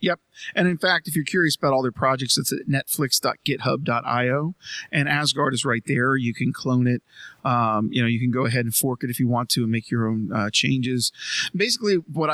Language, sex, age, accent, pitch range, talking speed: English, male, 40-59, American, 125-150 Hz, 220 wpm